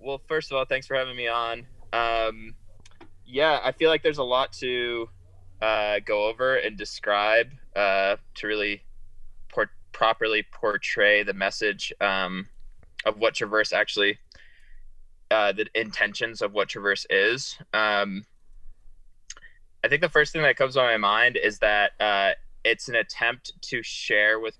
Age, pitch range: 20-39, 100-120 Hz